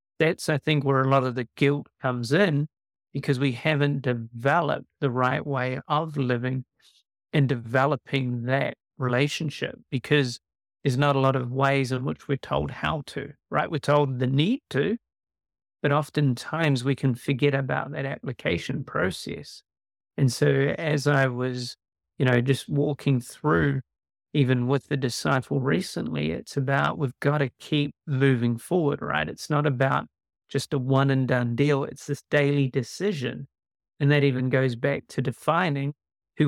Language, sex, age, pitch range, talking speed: English, male, 40-59, 130-145 Hz, 160 wpm